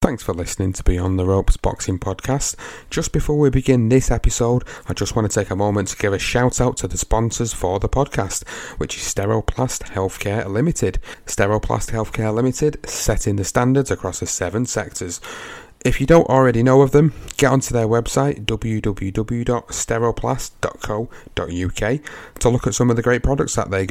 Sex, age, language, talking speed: male, 30-49, English, 175 wpm